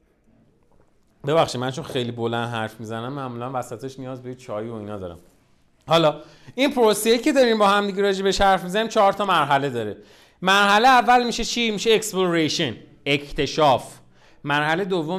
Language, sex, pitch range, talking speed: Persian, male, 130-195 Hz, 155 wpm